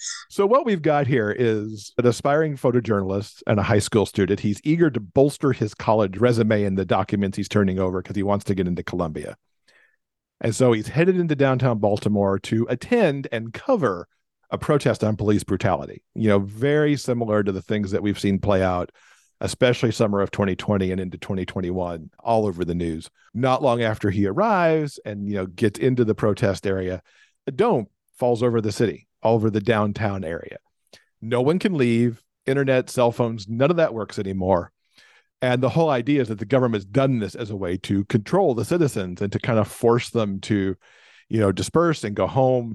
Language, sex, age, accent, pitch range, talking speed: English, male, 50-69, American, 100-130 Hz, 195 wpm